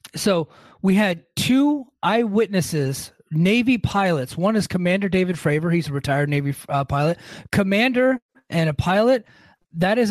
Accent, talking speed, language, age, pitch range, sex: American, 140 wpm, English, 30-49, 150-205 Hz, male